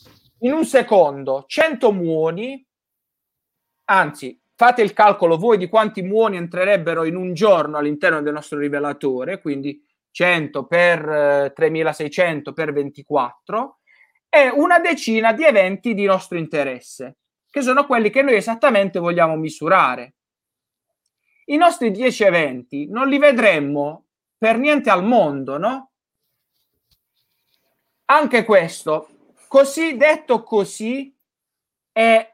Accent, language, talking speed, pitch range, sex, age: native, Italian, 115 wpm, 150-240 Hz, male, 30-49